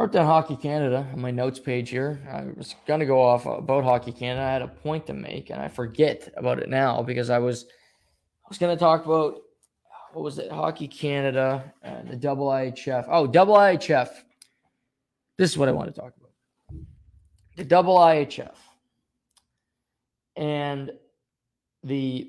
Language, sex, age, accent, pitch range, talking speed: English, male, 20-39, American, 125-150 Hz, 170 wpm